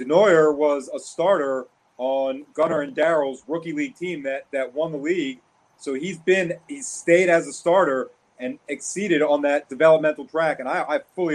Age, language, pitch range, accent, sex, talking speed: 30-49, English, 140-170 Hz, American, male, 180 wpm